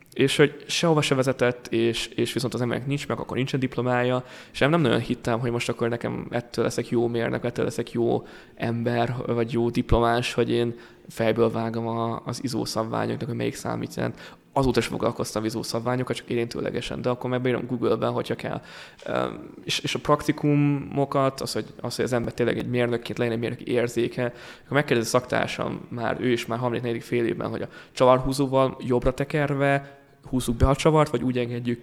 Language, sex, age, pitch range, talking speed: Hungarian, male, 20-39, 120-135 Hz, 170 wpm